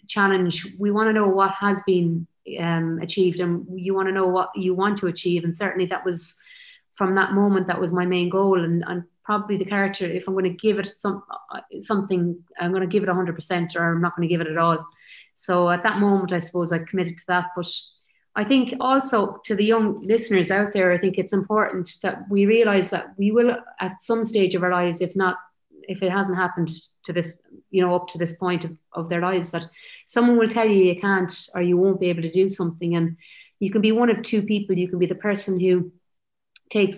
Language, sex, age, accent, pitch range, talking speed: English, female, 30-49, Irish, 175-200 Hz, 235 wpm